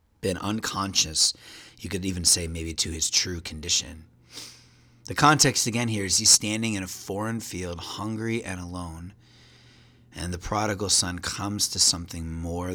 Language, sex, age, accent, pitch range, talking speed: English, male, 30-49, American, 80-100 Hz, 150 wpm